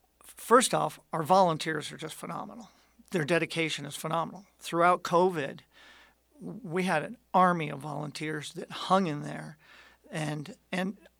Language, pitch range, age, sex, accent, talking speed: English, 150-180 Hz, 50-69, male, American, 135 wpm